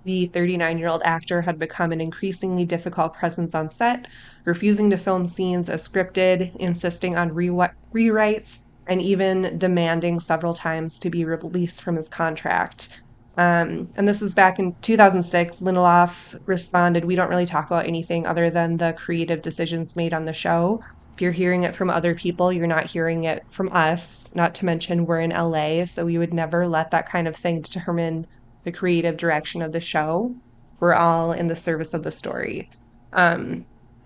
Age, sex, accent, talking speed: 20-39, female, American, 180 wpm